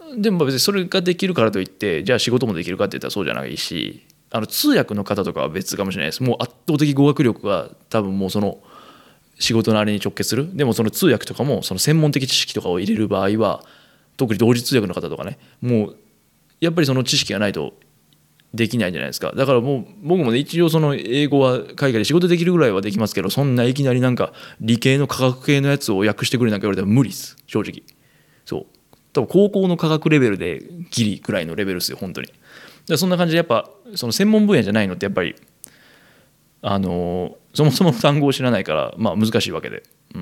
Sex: male